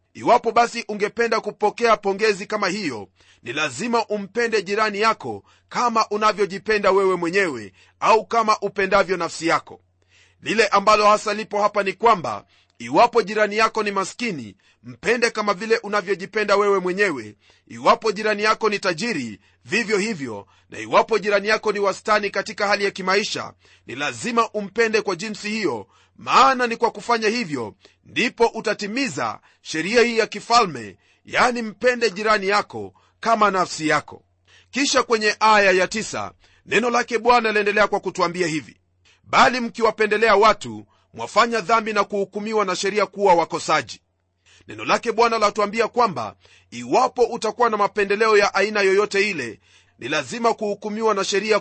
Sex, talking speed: male, 140 wpm